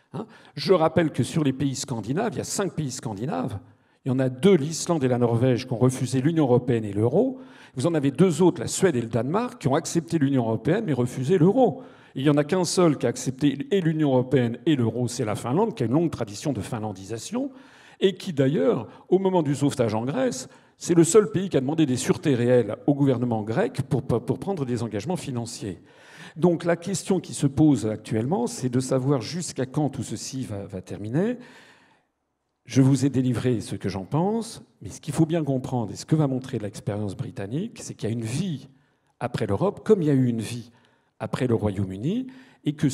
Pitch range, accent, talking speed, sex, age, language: 125-175 Hz, French, 220 wpm, male, 50-69, French